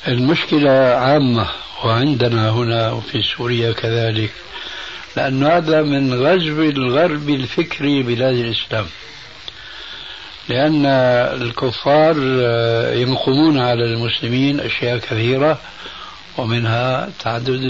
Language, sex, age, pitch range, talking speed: Arabic, male, 60-79, 120-145 Hz, 80 wpm